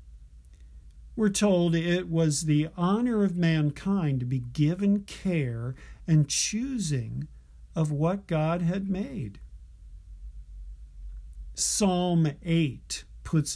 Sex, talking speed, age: male, 95 wpm, 50-69